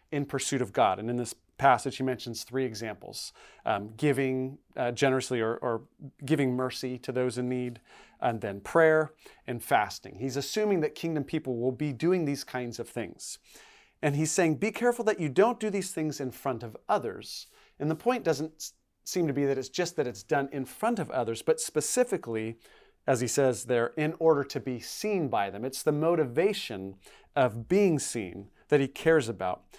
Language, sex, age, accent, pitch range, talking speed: English, male, 30-49, American, 125-160 Hz, 195 wpm